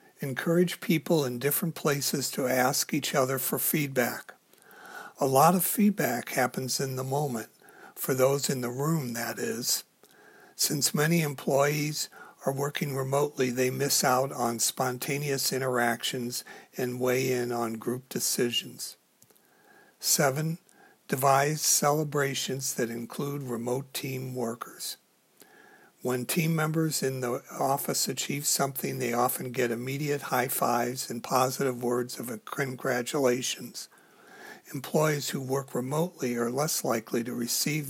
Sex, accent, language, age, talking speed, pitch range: male, American, English, 60-79, 125 wpm, 125-145 Hz